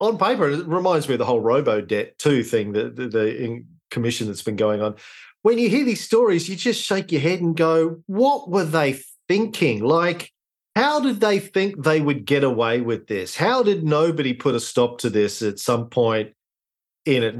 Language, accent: English, Australian